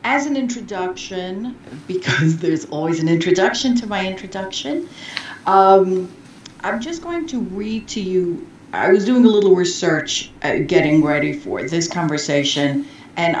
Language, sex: English, female